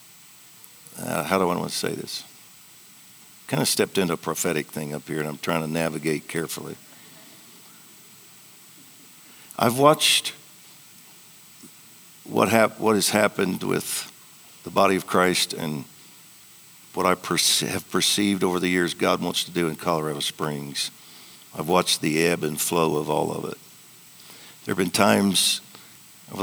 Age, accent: 60-79, American